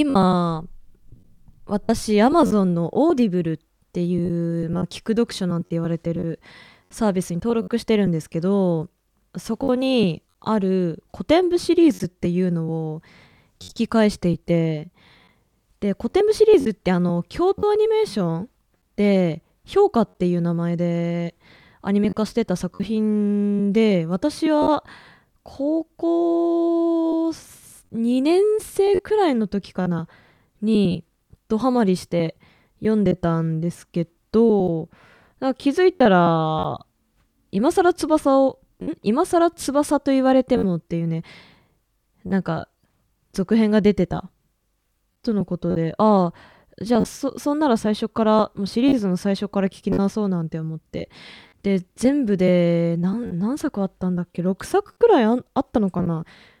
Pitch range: 175-260 Hz